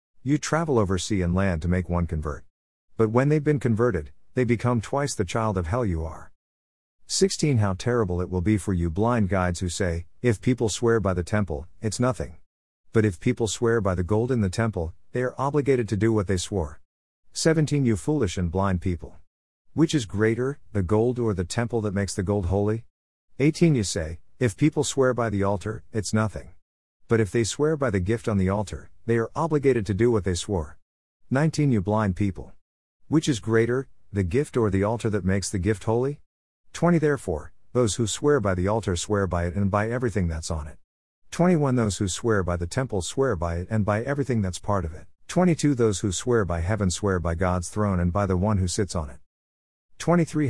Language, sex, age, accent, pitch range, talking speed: English, male, 50-69, American, 90-120 Hz, 215 wpm